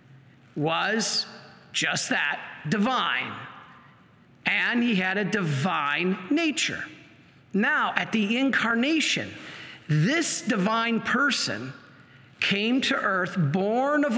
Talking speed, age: 95 wpm, 50-69